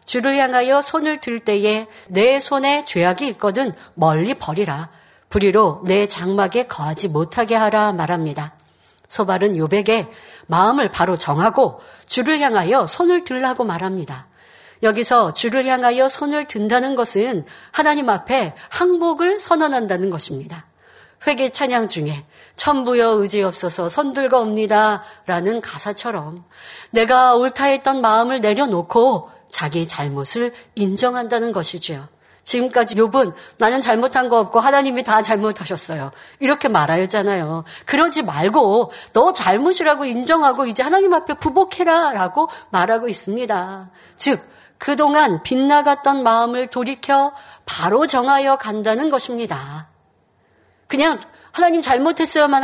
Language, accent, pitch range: Korean, native, 195-280 Hz